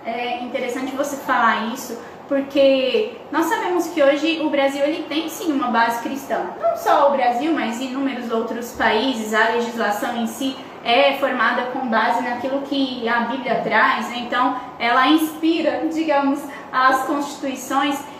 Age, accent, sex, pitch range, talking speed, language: 20-39, Brazilian, female, 260-320 Hz, 150 wpm, Portuguese